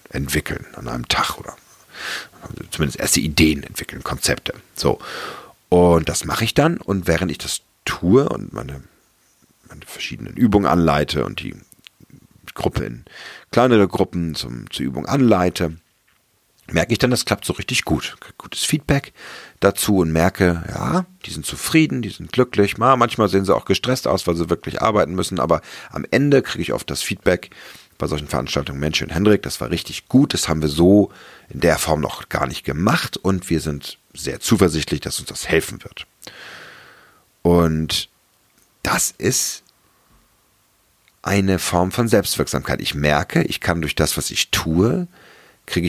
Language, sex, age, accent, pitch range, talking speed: German, male, 40-59, German, 80-115 Hz, 165 wpm